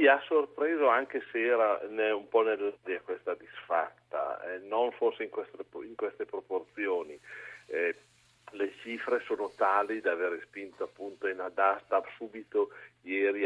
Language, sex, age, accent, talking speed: Italian, male, 40-59, native, 140 wpm